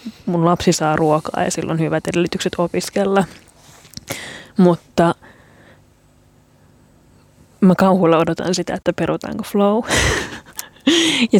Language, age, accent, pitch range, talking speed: Finnish, 20-39, native, 165-195 Hz, 95 wpm